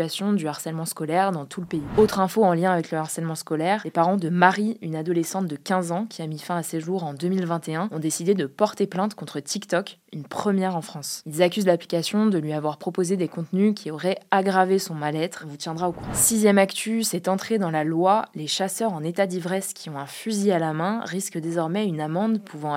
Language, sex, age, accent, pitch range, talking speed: French, female, 20-39, French, 160-195 Hz, 230 wpm